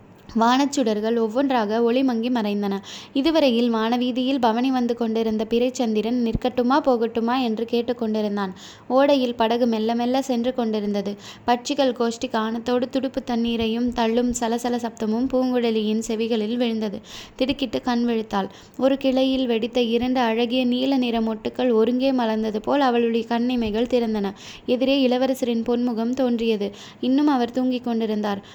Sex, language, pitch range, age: female, Tamil, 230-260 Hz, 20-39